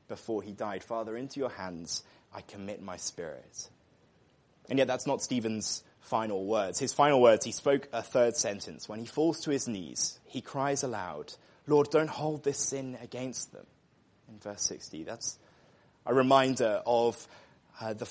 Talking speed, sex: 170 wpm, male